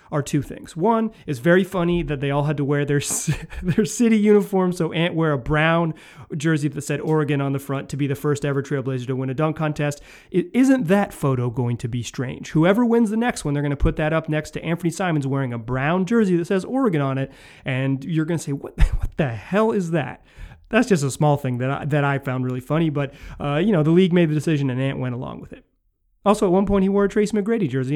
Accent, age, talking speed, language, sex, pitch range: American, 30-49, 260 wpm, English, male, 140-185 Hz